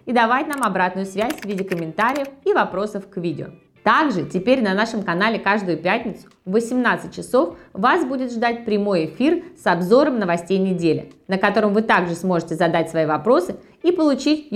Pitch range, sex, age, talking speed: 175-250 Hz, female, 20-39, 170 wpm